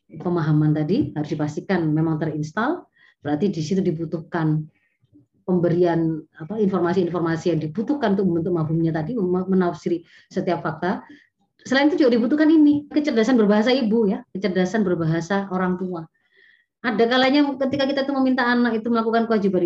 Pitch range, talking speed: 165-230 Hz, 135 wpm